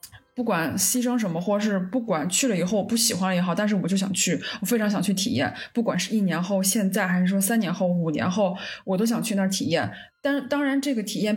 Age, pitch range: 20-39, 195-245 Hz